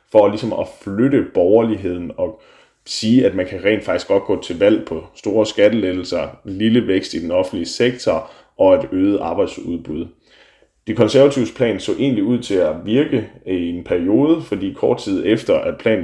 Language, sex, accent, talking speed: Danish, male, native, 175 wpm